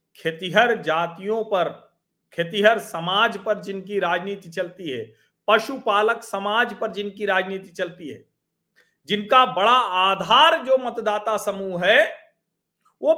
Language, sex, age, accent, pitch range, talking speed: Hindi, male, 40-59, native, 175-275 Hz, 115 wpm